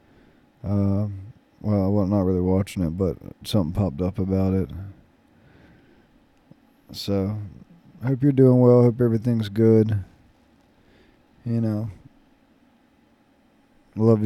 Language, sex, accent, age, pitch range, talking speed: English, male, American, 20-39, 100-115 Hz, 115 wpm